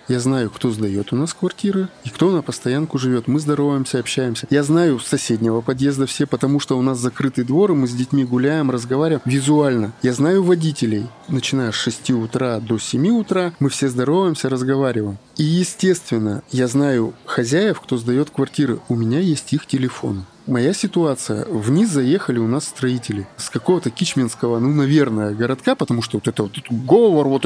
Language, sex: Russian, male